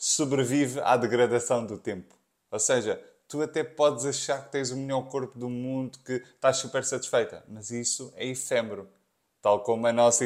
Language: Portuguese